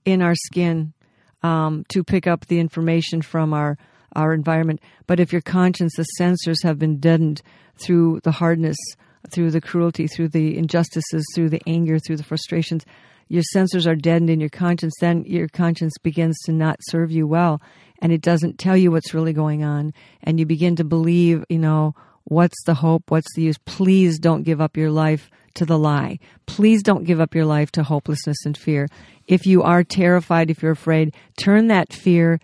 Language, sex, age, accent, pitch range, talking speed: English, female, 50-69, American, 155-175 Hz, 190 wpm